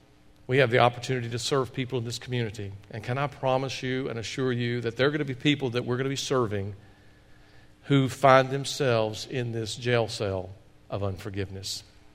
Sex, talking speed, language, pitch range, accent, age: male, 200 wpm, English, 105-130 Hz, American, 50-69